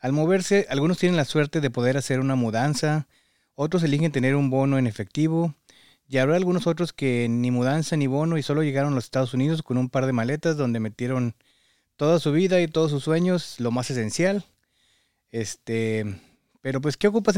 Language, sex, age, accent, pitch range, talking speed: Spanish, male, 30-49, Mexican, 125-160 Hz, 195 wpm